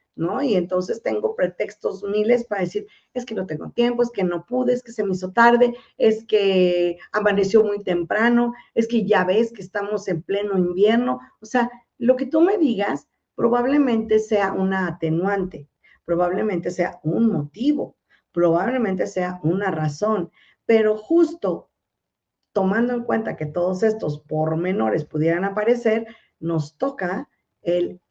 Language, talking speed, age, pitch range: Spanish, 150 wpm, 50-69, 170-230 Hz